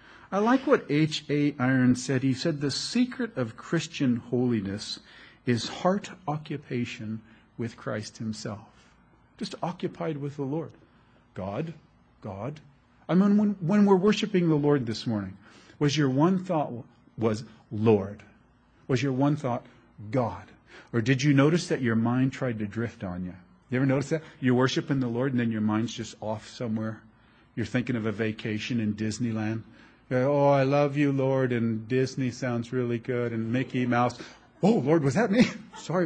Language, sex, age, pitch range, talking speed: English, male, 40-59, 110-145 Hz, 170 wpm